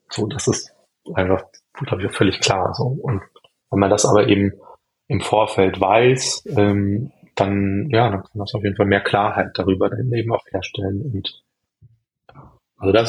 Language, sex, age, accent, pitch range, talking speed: German, male, 20-39, German, 95-115 Hz, 175 wpm